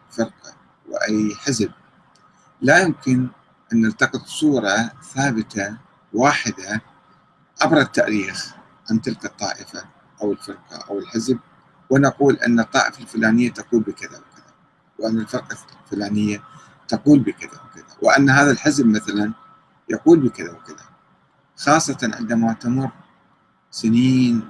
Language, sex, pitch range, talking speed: Arabic, male, 110-135 Hz, 105 wpm